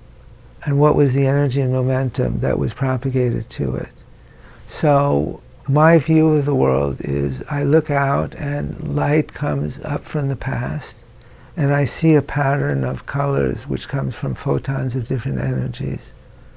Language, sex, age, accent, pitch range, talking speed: English, male, 60-79, American, 125-150 Hz, 155 wpm